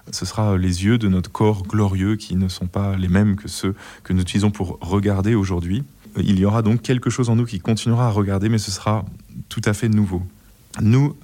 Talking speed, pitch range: 225 wpm, 95-115 Hz